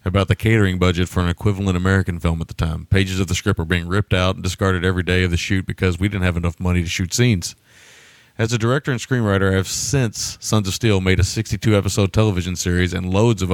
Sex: male